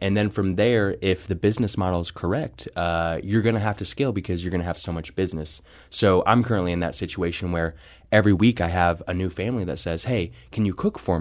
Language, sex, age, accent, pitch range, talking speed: English, male, 20-39, American, 85-100 Hz, 245 wpm